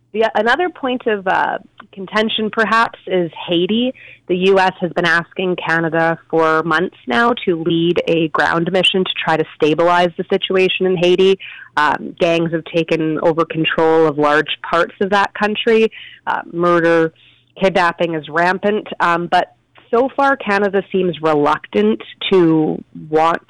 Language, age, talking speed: English, 30-49, 145 wpm